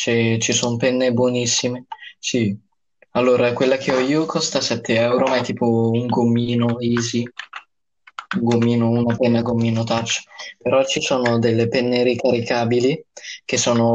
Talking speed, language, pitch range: 145 wpm, Italian, 110-130 Hz